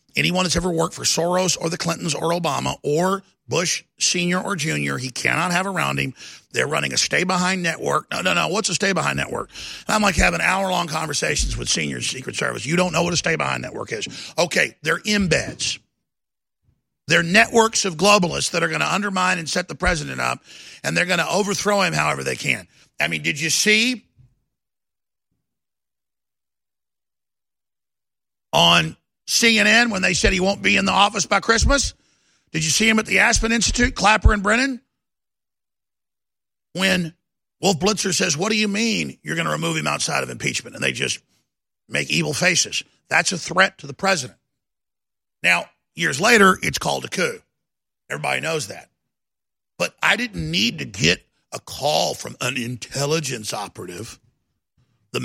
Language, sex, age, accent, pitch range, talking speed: English, male, 50-69, American, 160-205 Hz, 170 wpm